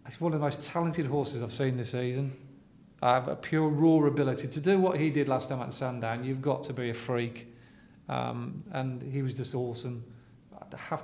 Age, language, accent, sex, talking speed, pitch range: 40-59, English, British, male, 215 wpm, 120-145 Hz